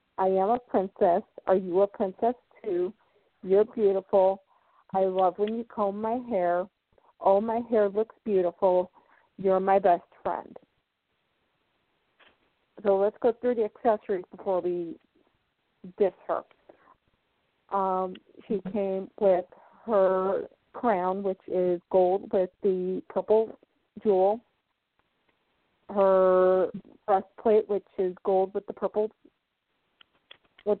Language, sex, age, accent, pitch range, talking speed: English, female, 40-59, American, 185-220 Hz, 115 wpm